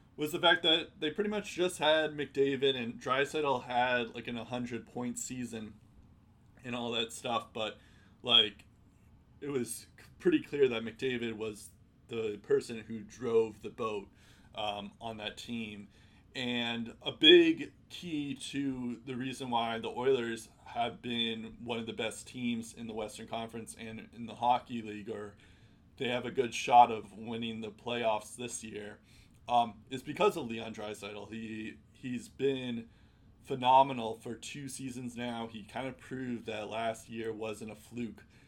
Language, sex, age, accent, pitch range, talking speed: English, male, 20-39, American, 110-125 Hz, 160 wpm